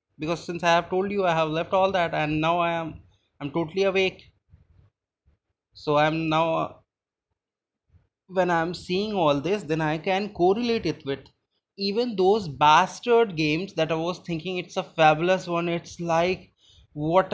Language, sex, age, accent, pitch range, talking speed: English, male, 20-39, Indian, 140-175 Hz, 170 wpm